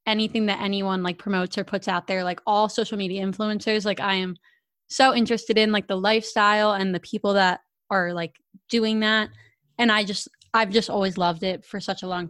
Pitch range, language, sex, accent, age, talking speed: 190-225 Hz, English, female, American, 20-39, 210 wpm